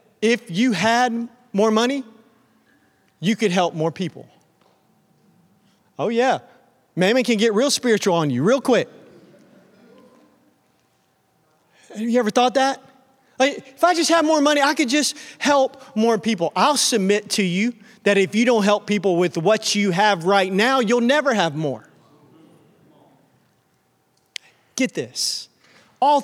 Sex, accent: male, American